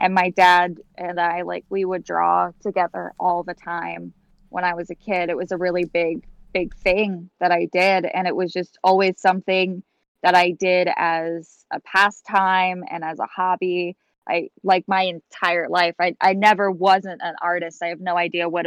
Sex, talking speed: female, 195 wpm